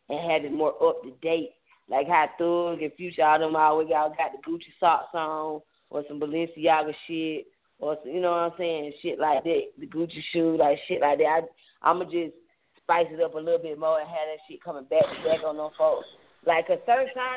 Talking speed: 235 wpm